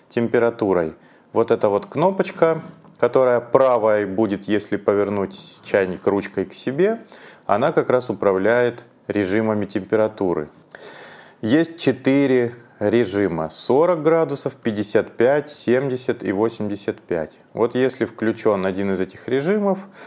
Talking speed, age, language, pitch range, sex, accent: 110 wpm, 30-49, Russian, 105-130 Hz, male, native